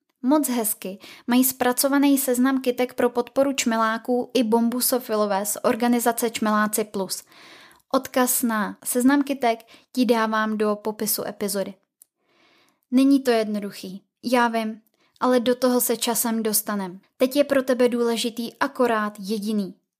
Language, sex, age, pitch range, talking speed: Czech, female, 20-39, 220-255 Hz, 125 wpm